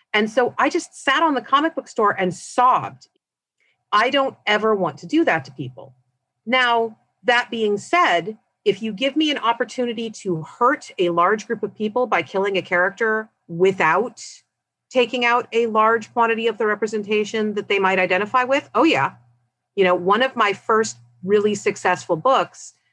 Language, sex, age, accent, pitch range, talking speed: English, female, 40-59, American, 170-245 Hz, 175 wpm